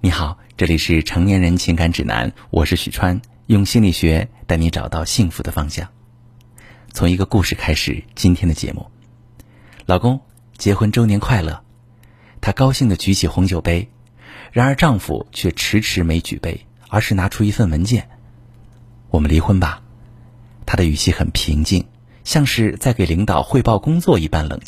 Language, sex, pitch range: Chinese, male, 85-120 Hz